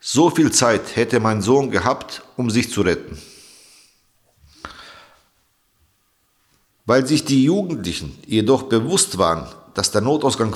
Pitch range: 110-145 Hz